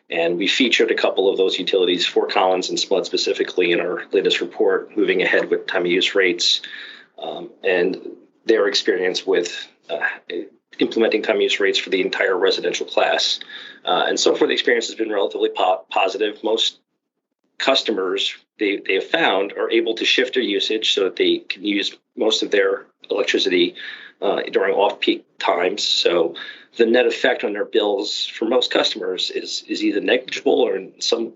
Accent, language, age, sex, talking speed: American, English, 40-59, male, 175 wpm